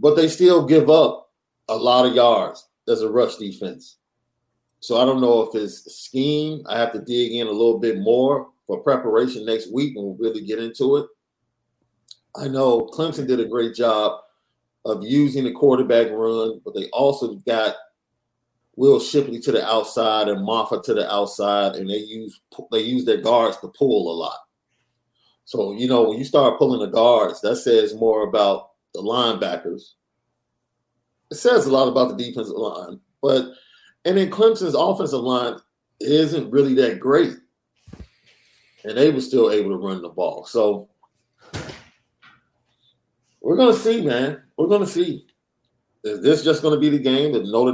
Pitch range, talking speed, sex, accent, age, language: 110-150 Hz, 175 wpm, male, American, 40-59, English